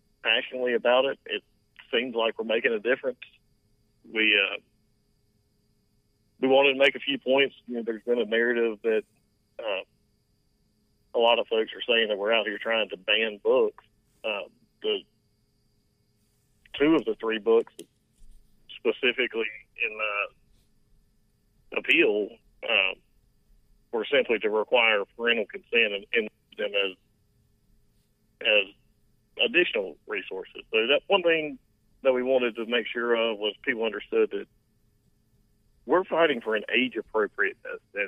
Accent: American